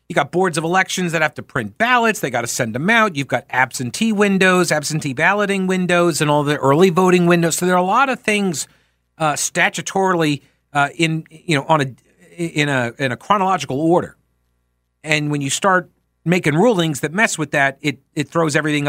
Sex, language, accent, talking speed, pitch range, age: male, English, American, 205 wpm, 125-190 Hz, 50-69